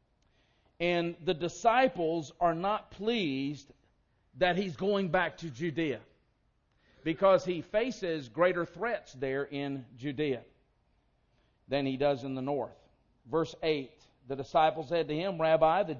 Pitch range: 140-185 Hz